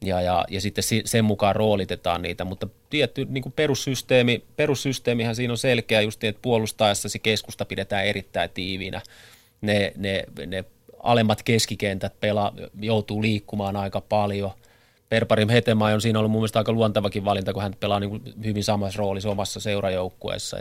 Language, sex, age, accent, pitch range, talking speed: Finnish, male, 30-49, native, 100-115 Hz, 155 wpm